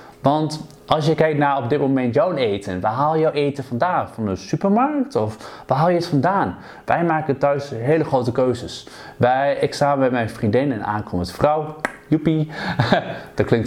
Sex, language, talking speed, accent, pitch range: male, Dutch, 185 wpm, Dutch, 125-155 Hz